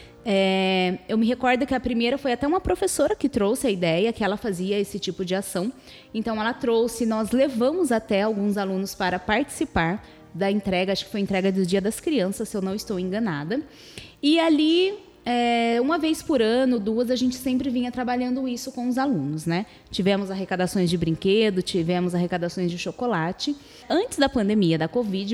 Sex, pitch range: female, 195-255 Hz